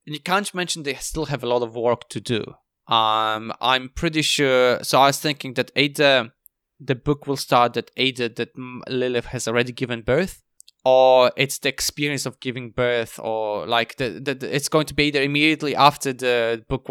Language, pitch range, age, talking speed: English, 115-140 Hz, 20-39, 195 wpm